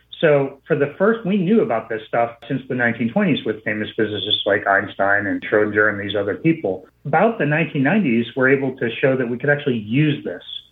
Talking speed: 200 wpm